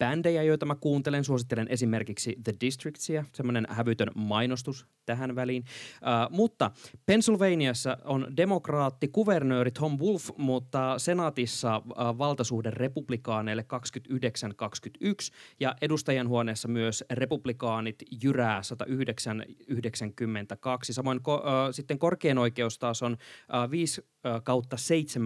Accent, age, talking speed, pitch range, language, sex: native, 20-39, 95 wpm, 115-150 Hz, Finnish, male